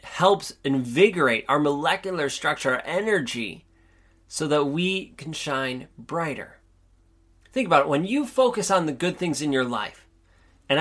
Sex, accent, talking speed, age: male, American, 150 wpm, 30-49